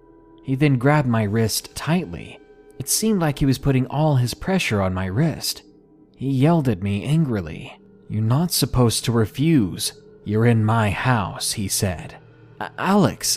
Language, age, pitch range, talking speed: English, 30-49, 105-150 Hz, 155 wpm